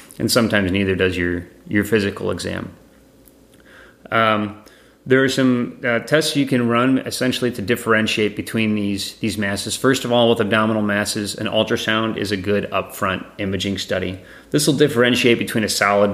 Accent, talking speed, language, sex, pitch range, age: American, 165 wpm, English, male, 100-120 Hz, 30-49